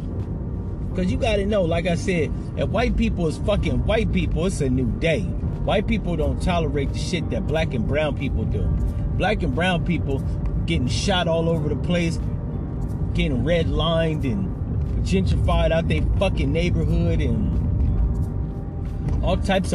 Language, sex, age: English, male, 30-49